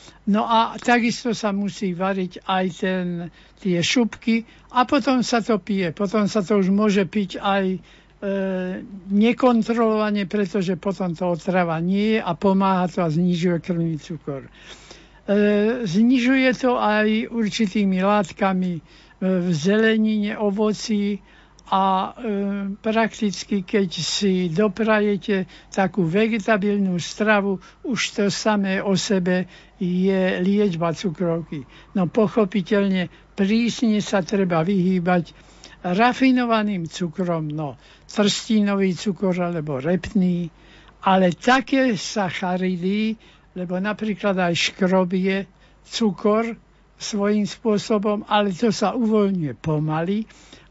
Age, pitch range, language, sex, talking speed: 60-79, 180-215 Hz, Slovak, male, 110 wpm